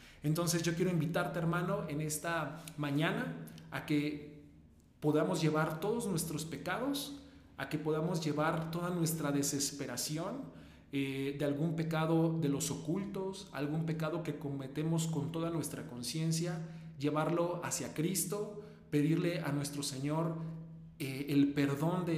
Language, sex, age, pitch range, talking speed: Spanish, male, 40-59, 140-165 Hz, 130 wpm